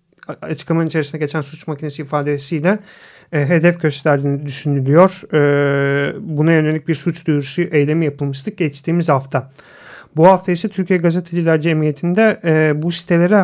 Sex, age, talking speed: male, 40-59, 130 wpm